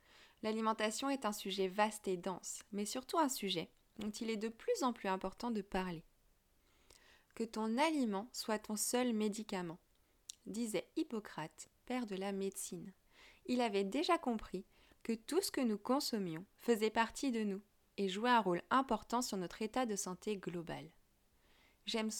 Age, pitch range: 20-39, 185-240 Hz